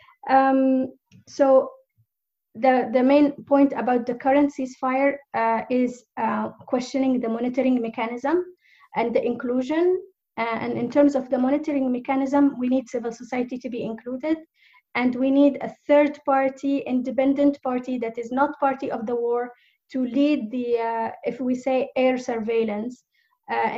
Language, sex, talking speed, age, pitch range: English, female, 150 wpm, 20-39, 225-275 Hz